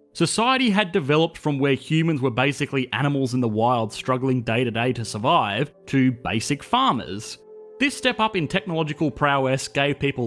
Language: English